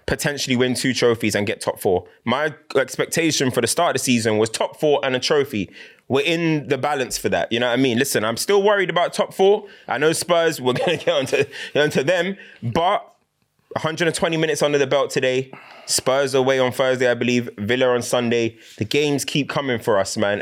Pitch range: 110-150 Hz